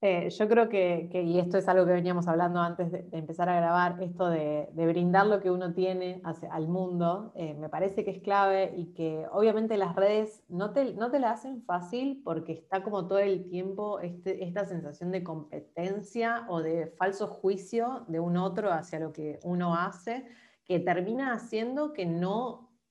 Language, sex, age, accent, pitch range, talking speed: Spanish, female, 30-49, Argentinian, 165-205 Hz, 190 wpm